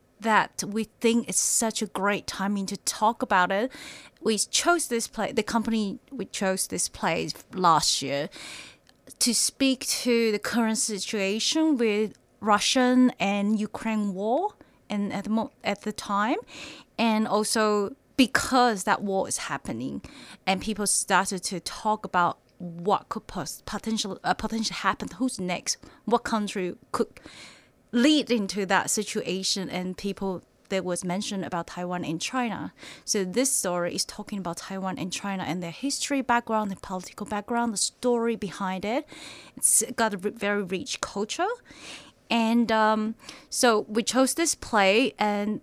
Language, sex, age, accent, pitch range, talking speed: English, female, 30-49, Chinese, 195-235 Hz, 150 wpm